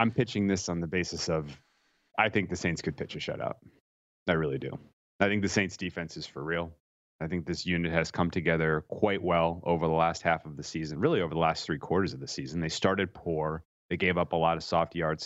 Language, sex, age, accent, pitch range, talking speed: English, male, 30-49, American, 80-95 Hz, 245 wpm